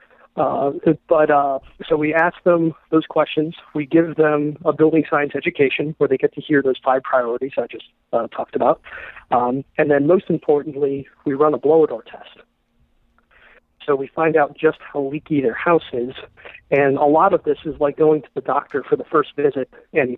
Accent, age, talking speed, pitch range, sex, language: American, 40-59, 200 wpm, 135-155 Hz, male, English